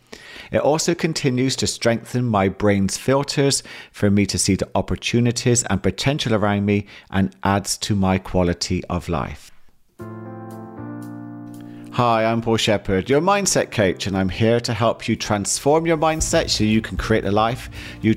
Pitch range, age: 95-120 Hz, 40-59